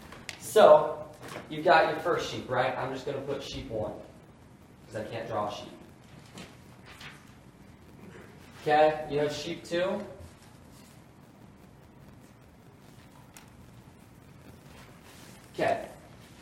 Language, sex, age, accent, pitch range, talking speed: English, male, 20-39, American, 115-140 Hz, 90 wpm